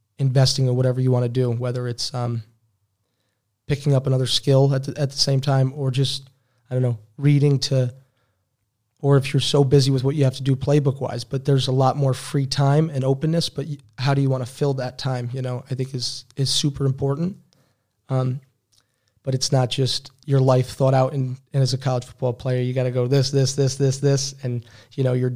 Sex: male